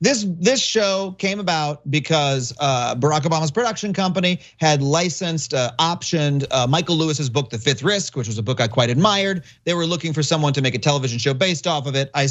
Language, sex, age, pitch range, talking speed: English, male, 30-49, 140-180 Hz, 215 wpm